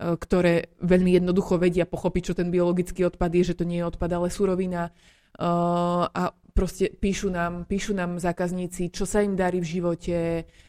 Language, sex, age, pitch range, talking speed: Slovak, female, 20-39, 170-190 Hz, 170 wpm